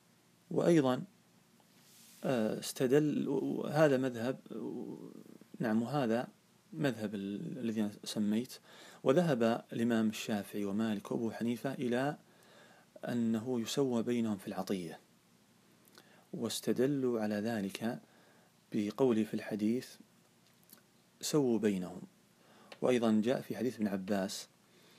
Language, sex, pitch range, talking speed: Arabic, male, 105-135 Hz, 85 wpm